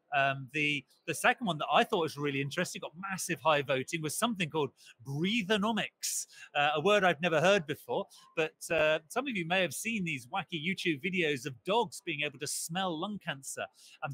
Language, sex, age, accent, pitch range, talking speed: English, male, 40-59, British, 150-185 Hz, 200 wpm